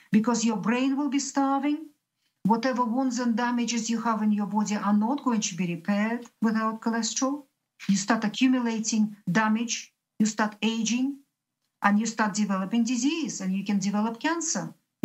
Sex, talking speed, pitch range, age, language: female, 160 wpm, 195-245 Hz, 50-69, English